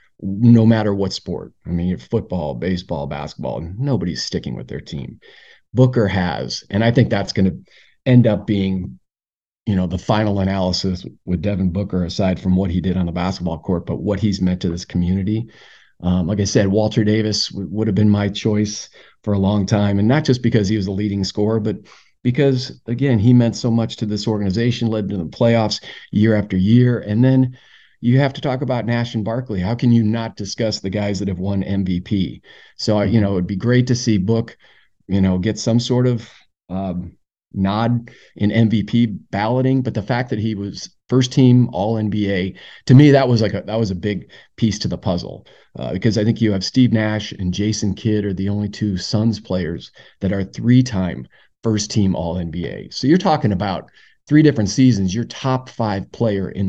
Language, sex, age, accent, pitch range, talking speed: English, male, 40-59, American, 95-115 Hz, 200 wpm